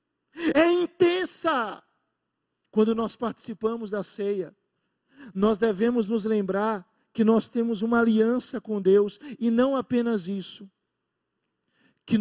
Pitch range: 180-225 Hz